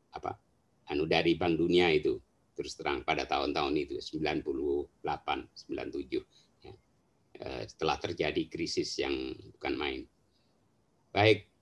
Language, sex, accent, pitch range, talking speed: Indonesian, male, native, 340-390 Hz, 110 wpm